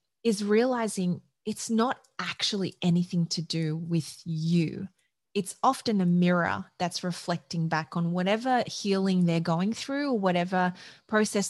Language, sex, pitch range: English, female, 170-195 Hz